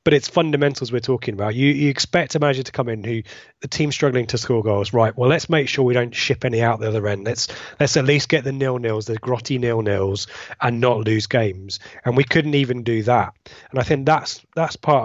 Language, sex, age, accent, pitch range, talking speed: English, male, 20-39, British, 115-145 Hz, 245 wpm